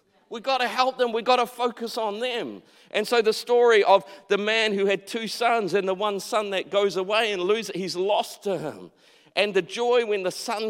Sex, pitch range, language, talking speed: male, 185-230 Hz, English, 230 wpm